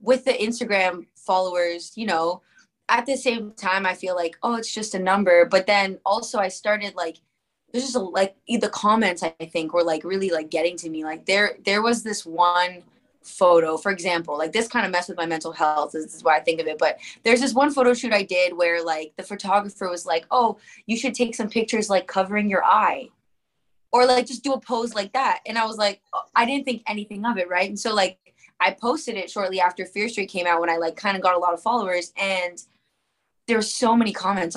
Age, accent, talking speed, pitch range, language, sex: 20-39, American, 235 wpm, 180-235 Hz, English, female